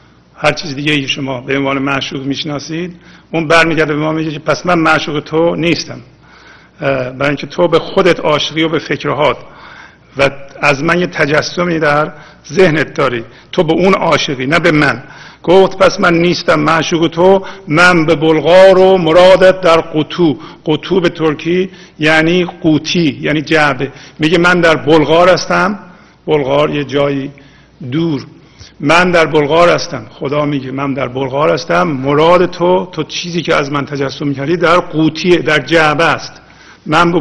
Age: 50-69